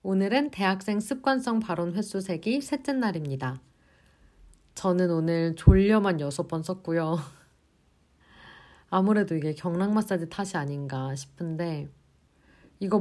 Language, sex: Korean, female